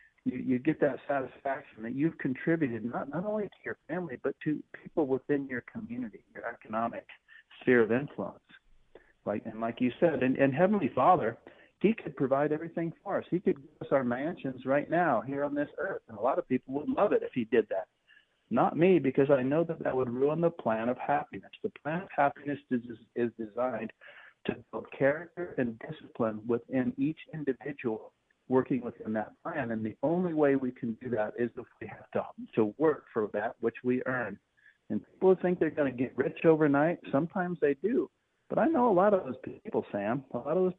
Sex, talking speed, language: male, 210 wpm, English